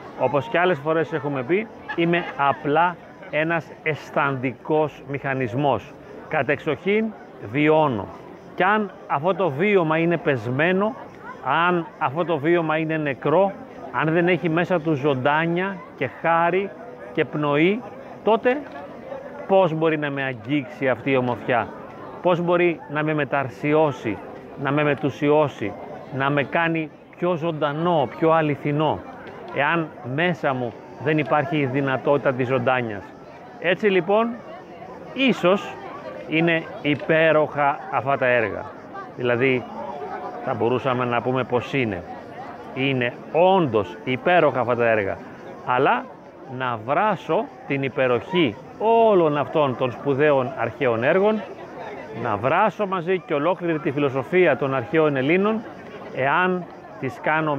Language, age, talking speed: Greek, 30-49, 120 wpm